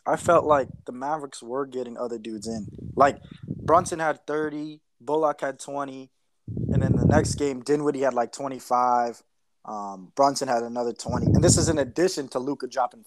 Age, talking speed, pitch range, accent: 20-39, 180 wpm, 120-150 Hz, American